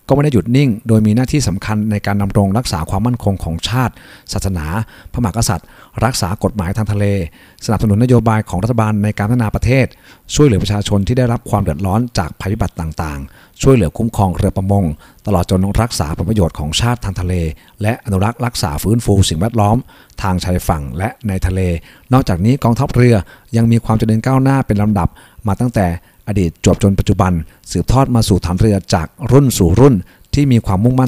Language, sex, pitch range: Thai, male, 95-120 Hz